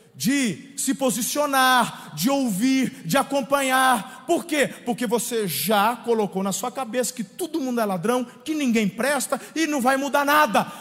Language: Portuguese